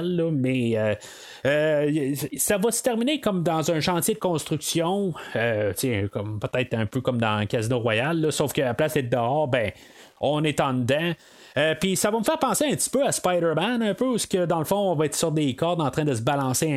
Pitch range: 130-185 Hz